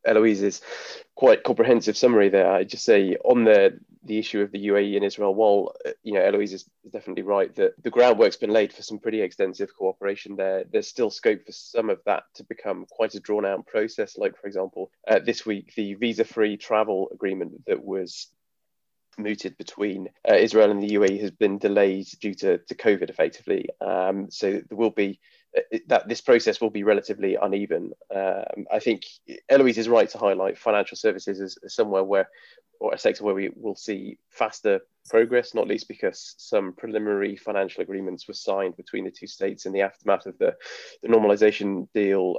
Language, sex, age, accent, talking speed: English, male, 20-39, British, 185 wpm